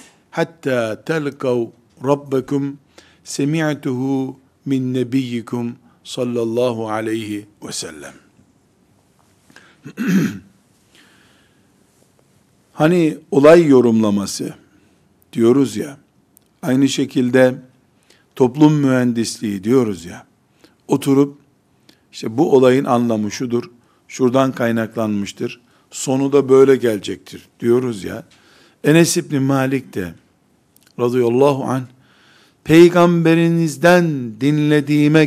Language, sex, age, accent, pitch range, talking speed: Turkish, male, 50-69, native, 125-150 Hz, 75 wpm